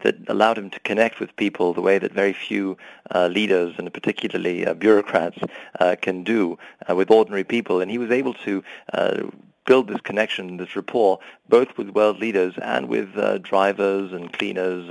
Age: 40-59